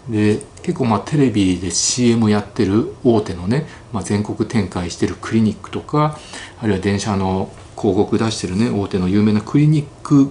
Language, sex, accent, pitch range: Japanese, male, native, 100-125 Hz